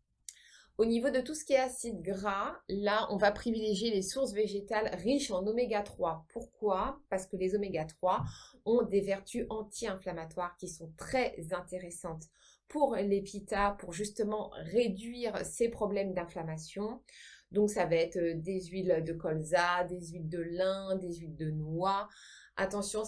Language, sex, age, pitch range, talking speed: French, female, 20-39, 185-230 Hz, 150 wpm